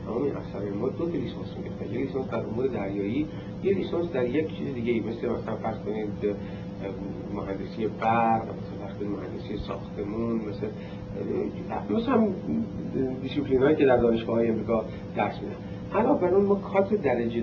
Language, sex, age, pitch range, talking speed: Persian, male, 60-79, 100-120 Hz, 150 wpm